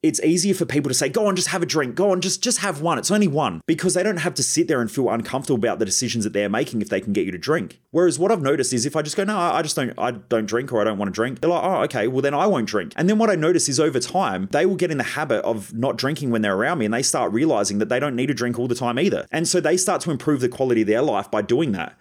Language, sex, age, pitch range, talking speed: English, male, 30-49, 110-150 Hz, 340 wpm